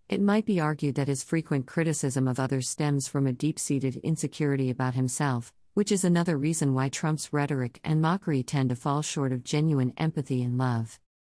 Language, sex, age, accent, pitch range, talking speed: English, female, 50-69, American, 130-155 Hz, 185 wpm